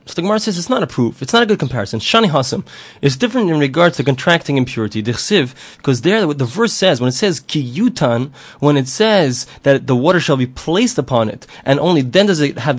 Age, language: 20-39, English